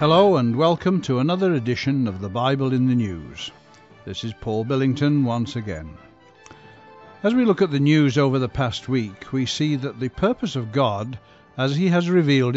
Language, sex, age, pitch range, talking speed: English, male, 60-79, 115-155 Hz, 185 wpm